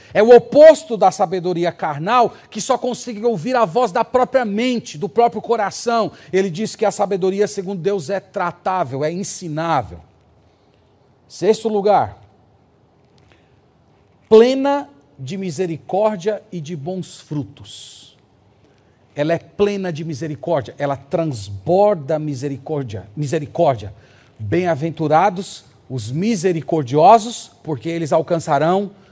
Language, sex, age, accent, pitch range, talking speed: Portuguese, male, 40-59, Brazilian, 145-210 Hz, 110 wpm